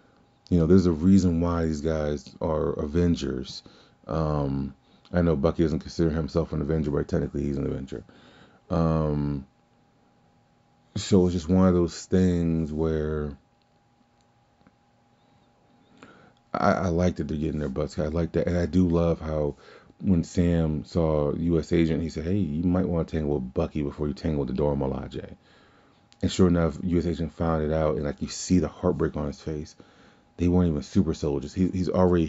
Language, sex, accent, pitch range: English, male, American, 75-90 Hz